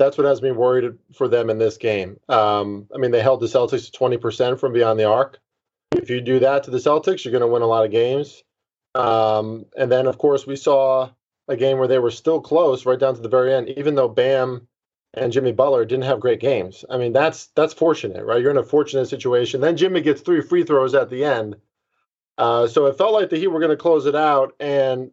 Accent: American